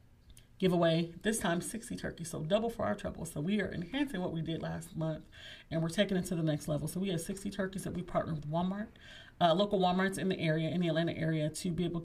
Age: 30-49